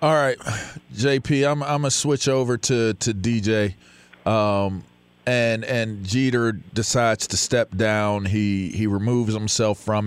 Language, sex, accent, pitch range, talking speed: English, male, American, 105-125 Hz, 145 wpm